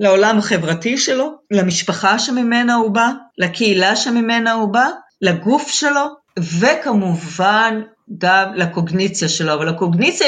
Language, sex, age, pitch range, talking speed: Hebrew, female, 30-49, 180-225 Hz, 110 wpm